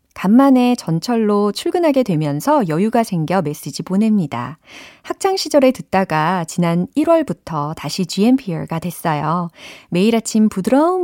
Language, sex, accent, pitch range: Korean, female, native, 165-250 Hz